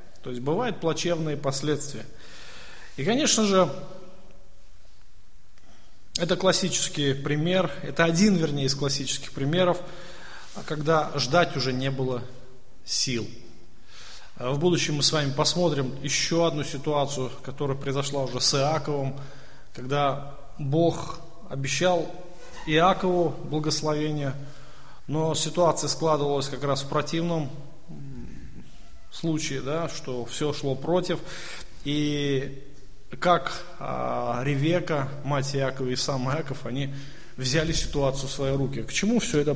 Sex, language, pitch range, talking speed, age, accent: male, Russian, 135-175 Hz, 110 wpm, 20-39, native